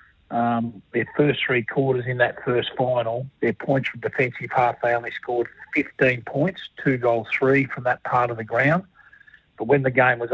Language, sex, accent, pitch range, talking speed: English, male, Australian, 115-130 Hz, 190 wpm